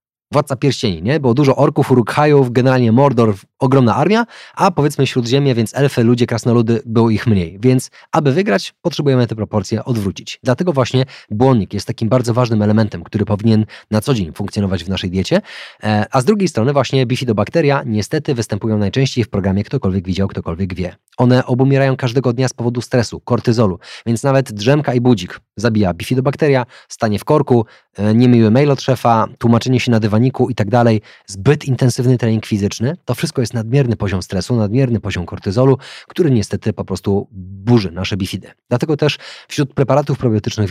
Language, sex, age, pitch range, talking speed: Polish, male, 20-39, 105-135 Hz, 165 wpm